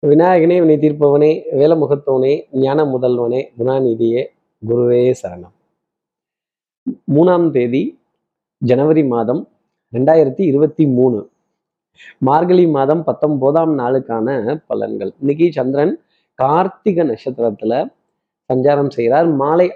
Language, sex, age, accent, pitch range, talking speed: Tamil, male, 30-49, native, 125-160 Hz, 85 wpm